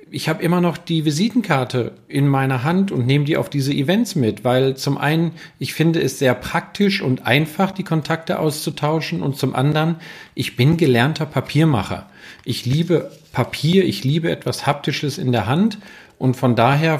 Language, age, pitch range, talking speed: German, 40-59, 125-165 Hz, 175 wpm